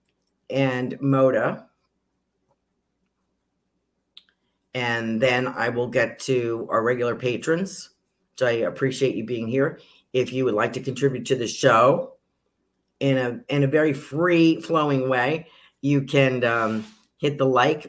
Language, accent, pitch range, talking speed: English, American, 125-155 Hz, 135 wpm